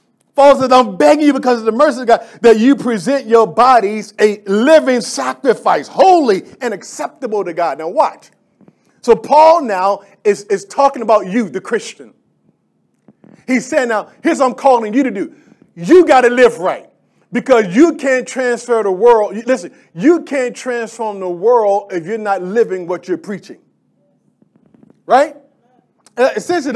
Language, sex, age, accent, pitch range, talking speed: English, male, 40-59, American, 195-255 Hz, 160 wpm